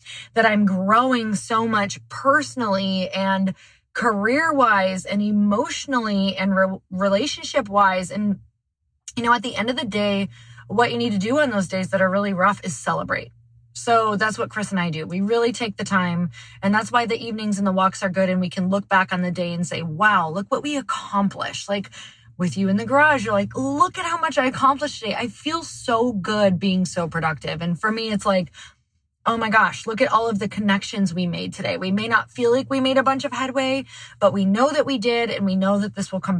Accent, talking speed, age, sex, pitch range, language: American, 225 wpm, 20-39, female, 185-235 Hz, English